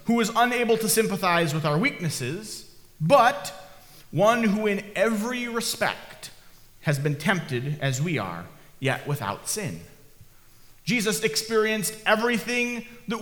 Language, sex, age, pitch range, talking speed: English, male, 30-49, 145-210 Hz, 125 wpm